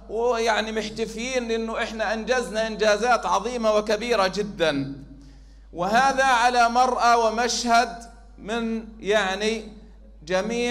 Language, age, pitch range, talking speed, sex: Arabic, 40-59, 195-240 Hz, 90 wpm, male